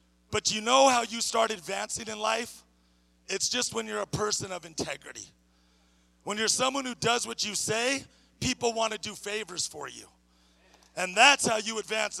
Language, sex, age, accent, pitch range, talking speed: English, male, 40-59, American, 185-235 Hz, 180 wpm